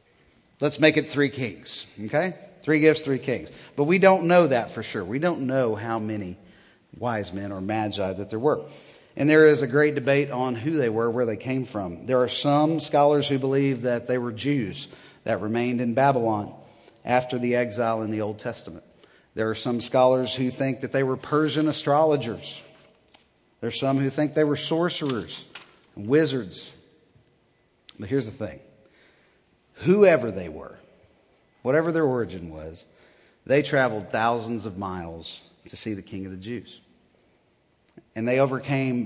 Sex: male